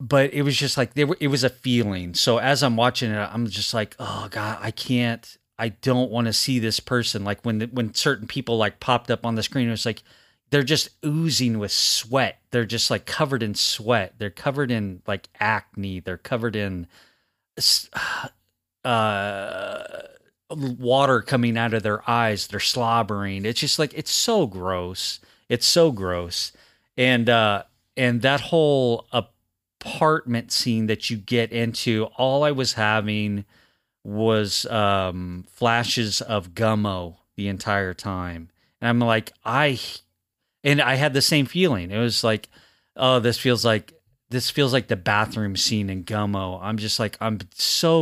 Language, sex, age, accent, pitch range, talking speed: English, male, 30-49, American, 105-125 Hz, 165 wpm